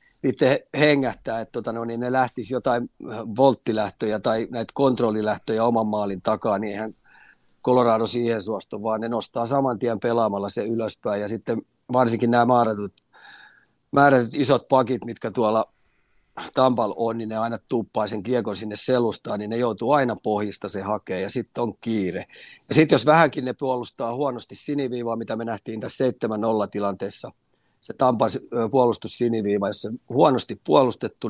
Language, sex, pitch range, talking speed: Finnish, male, 105-125 Hz, 155 wpm